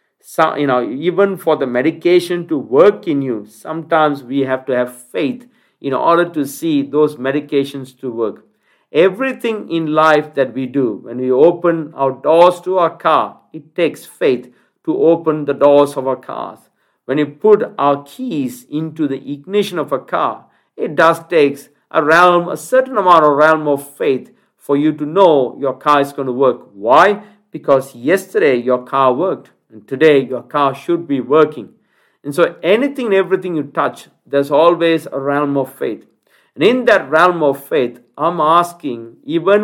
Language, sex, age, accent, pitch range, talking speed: English, male, 50-69, Indian, 140-175 Hz, 175 wpm